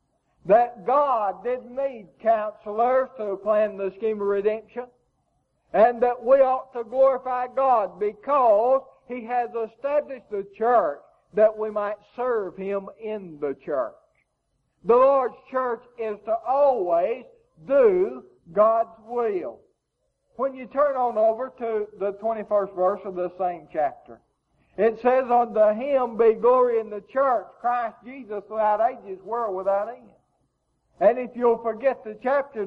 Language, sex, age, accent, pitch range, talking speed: English, male, 60-79, American, 205-260 Hz, 140 wpm